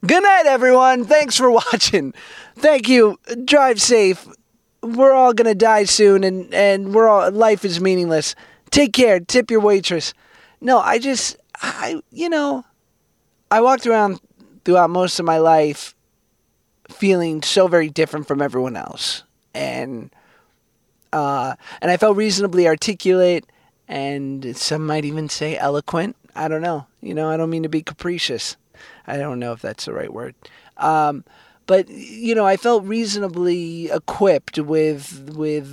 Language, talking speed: English, 155 wpm